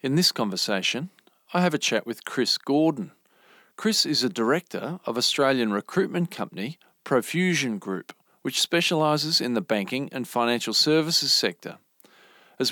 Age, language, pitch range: 40-59, English, 110-150 Hz